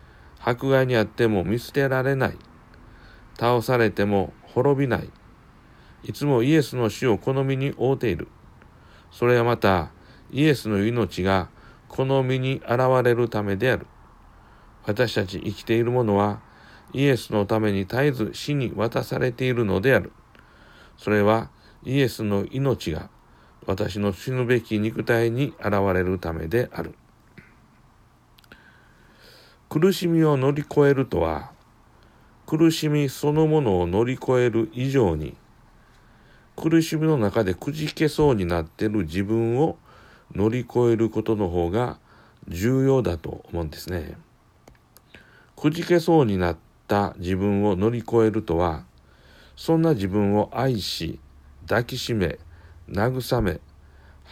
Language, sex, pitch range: Japanese, male, 95-130 Hz